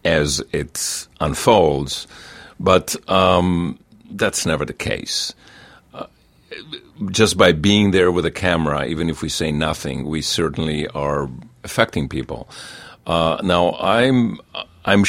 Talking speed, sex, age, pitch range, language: 125 wpm, male, 50-69, 75-85 Hz, English